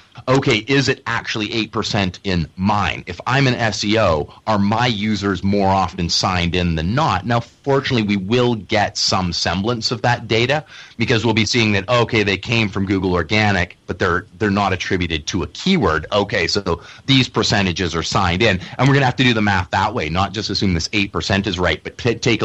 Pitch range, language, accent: 85-115 Hz, English, American